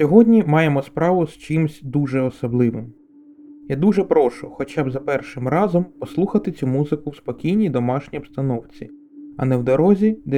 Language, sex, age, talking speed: Ukrainian, male, 20-39, 155 wpm